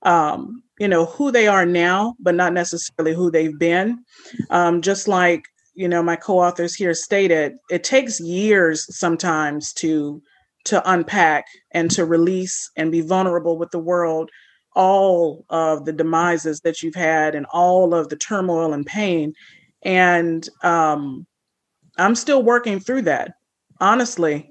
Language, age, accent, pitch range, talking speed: English, 30-49, American, 165-195 Hz, 145 wpm